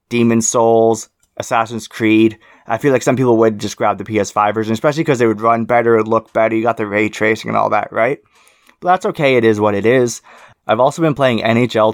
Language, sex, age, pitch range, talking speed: English, male, 20-39, 110-130 Hz, 225 wpm